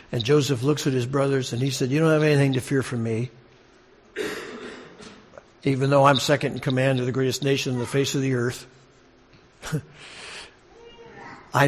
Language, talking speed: English, 175 wpm